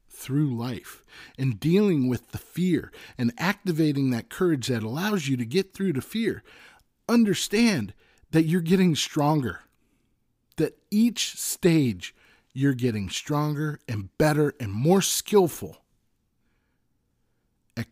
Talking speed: 120 wpm